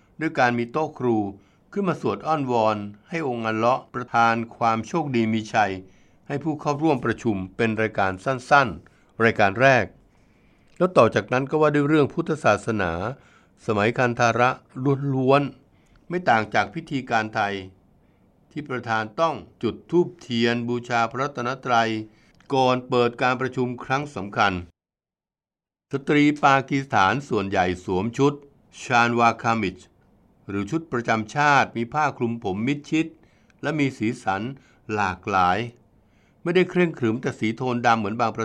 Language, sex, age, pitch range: Thai, male, 60-79, 110-145 Hz